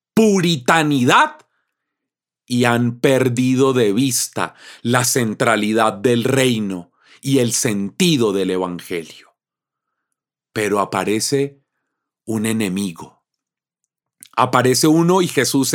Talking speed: 90 wpm